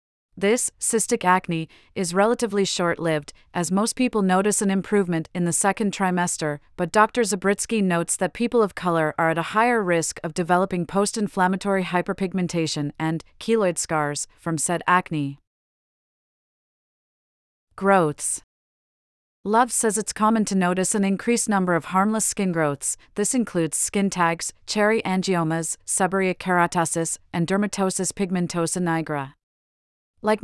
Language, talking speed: English, 130 wpm